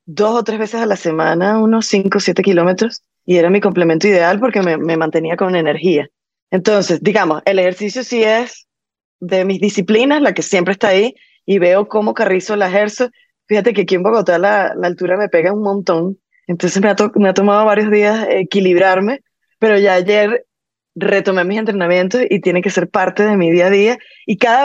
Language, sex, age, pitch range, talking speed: Spanish, female, 20-39, 185-225 Hz, 200 wpm